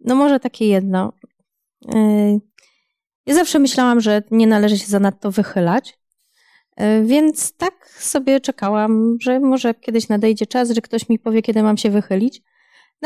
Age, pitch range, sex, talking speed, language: 20-39, 215-275 Hz, female, 145 wpm, Polish